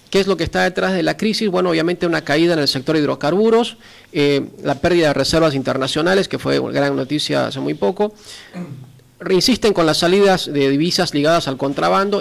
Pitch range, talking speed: 145-185 Hz, 200 wpm